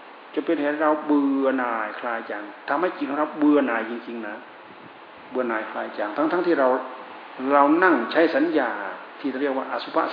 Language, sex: Thai, male